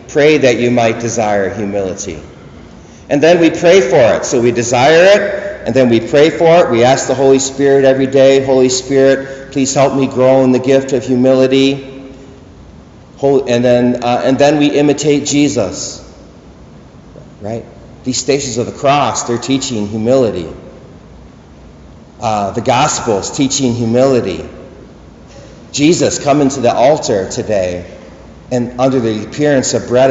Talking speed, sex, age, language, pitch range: 145 wpm, male, 40-59, English, 115-140 Hz